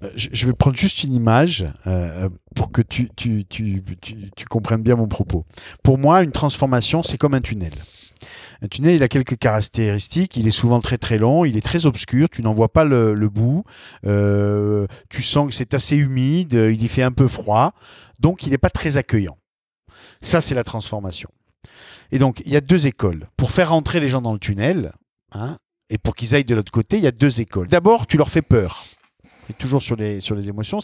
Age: 40-59